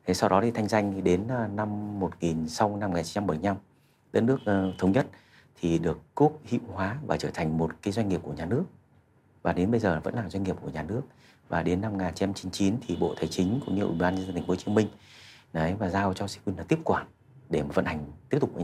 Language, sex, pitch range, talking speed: Vietnamese, male, 90-110 Hz, 245 wpm